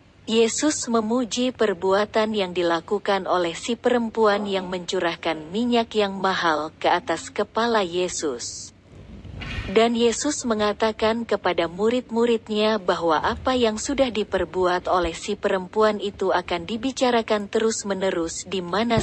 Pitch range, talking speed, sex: 175-230 Hz, 115 wpm, female